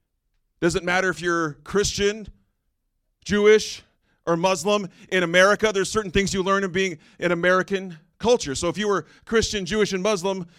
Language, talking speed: English, 160 wpm